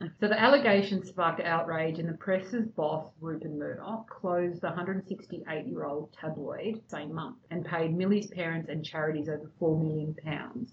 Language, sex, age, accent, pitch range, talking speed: English, female, 30-49, Australian, 160-185 Hz, 145 wpm